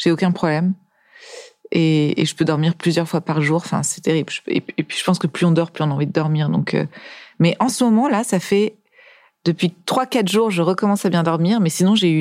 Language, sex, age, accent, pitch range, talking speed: French, female, 40-59, French, 165-195 Hz, 250 wpm